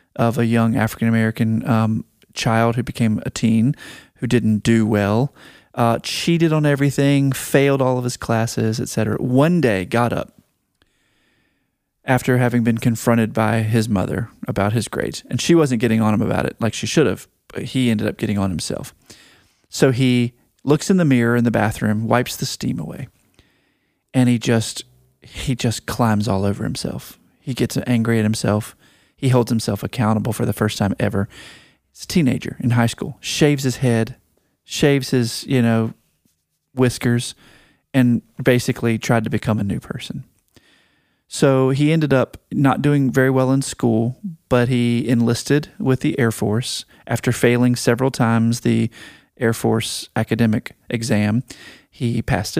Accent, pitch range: American, 110-130 Hz